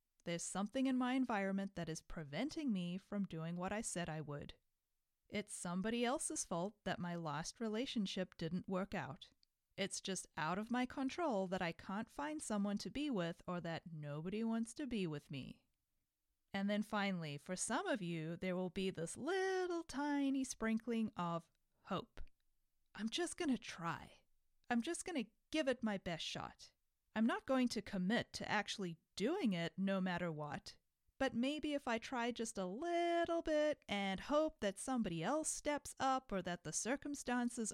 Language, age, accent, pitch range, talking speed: English, 30-49, American, 180-255 Hz, 175 wpm